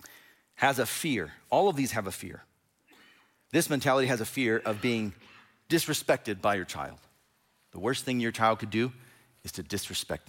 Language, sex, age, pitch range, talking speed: English, male, 40-59, 115-170 Hz, 175 wpm